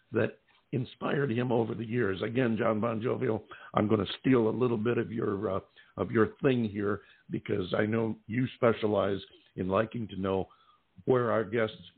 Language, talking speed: English, 180 wpm